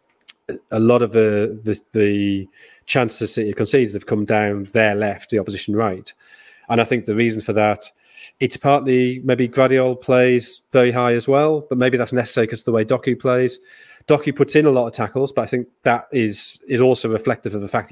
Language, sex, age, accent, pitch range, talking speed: English, male, 30-49, British, 105-130 Hz, 210 wpm